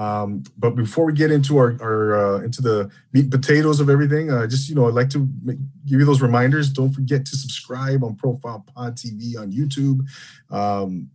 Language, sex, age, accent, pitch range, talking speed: English, male, 30-49, American, 110-140 Hz, 205 wpm